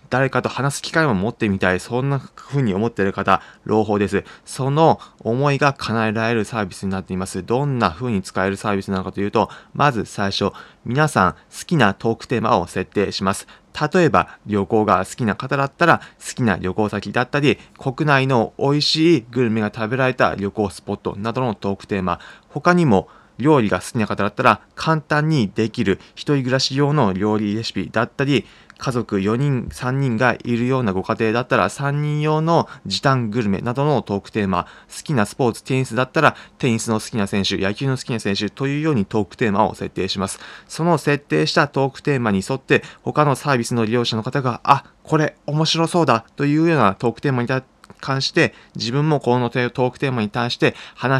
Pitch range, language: 105-140 Hz, Japanese